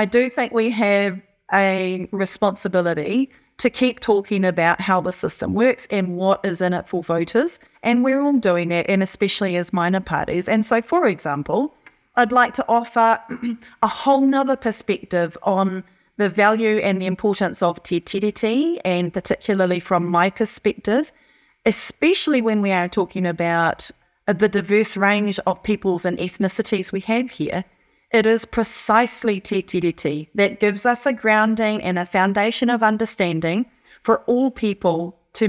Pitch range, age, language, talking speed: 185-230 Hz, 30-49, English, 155 wpm